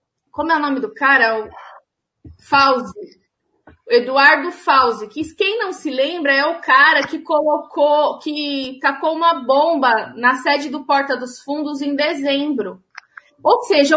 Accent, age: Brazilian, 20-39